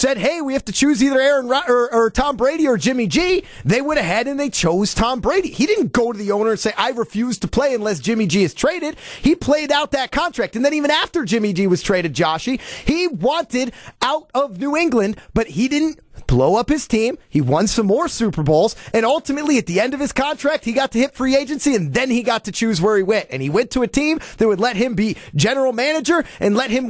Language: English